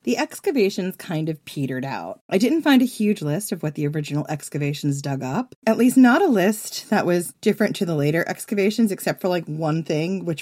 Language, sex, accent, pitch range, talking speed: English, female, American, 150-210 Hz, 215 wpm